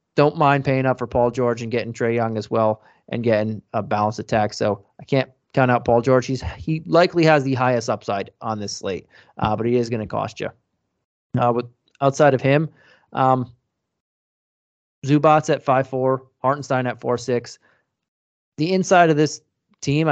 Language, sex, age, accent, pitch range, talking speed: English, male, 20-39, American, 115-135 Hz, 180 wpm